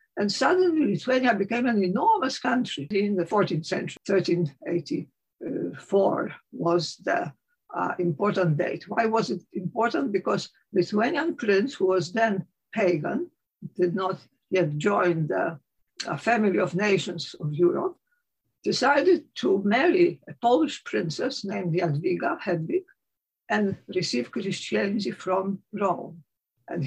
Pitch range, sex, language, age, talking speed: 180-240 Hz, female, English, 60-79, 120 wpm